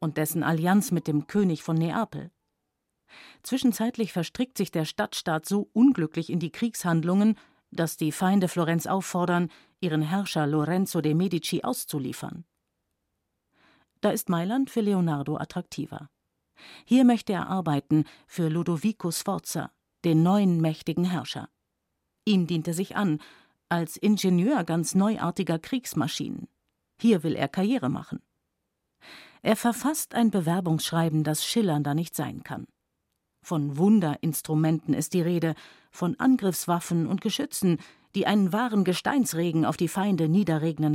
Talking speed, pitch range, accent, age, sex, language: 125 wpm, 160-200 Hz, German, 50-69, female, German